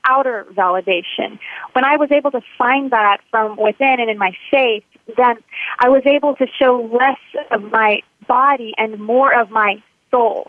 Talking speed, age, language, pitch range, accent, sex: 170 wpm, 30-49, English, 215-260 Hz, American, female